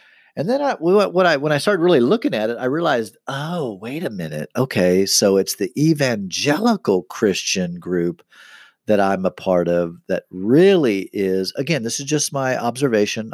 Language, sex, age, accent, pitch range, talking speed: English, male, 40-59, American, 95-145 Hz, 175 wpm